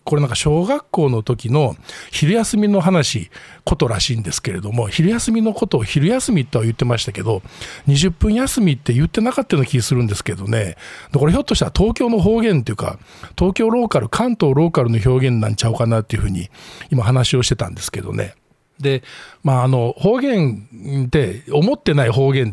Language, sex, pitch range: Japanese, male, 115-165 Hz